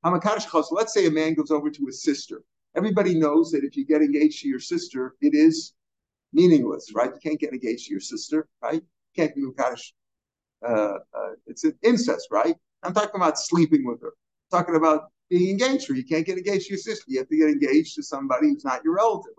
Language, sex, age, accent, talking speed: English, male, 50-69, American, 225 wpm